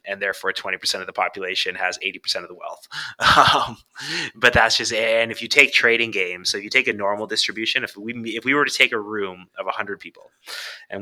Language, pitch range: English, 100-125 Hz